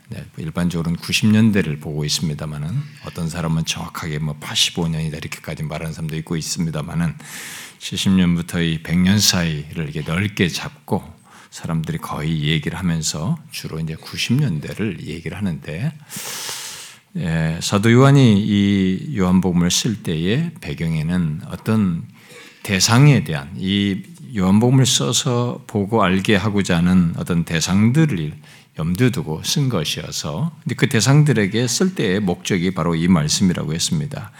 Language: Korean